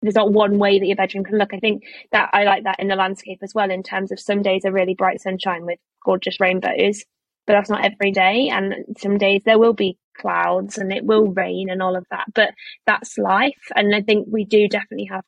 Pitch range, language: 190-220 Hz, English